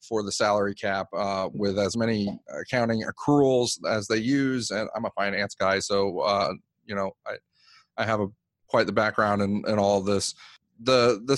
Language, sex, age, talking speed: English, male, 30-49, 185 wpm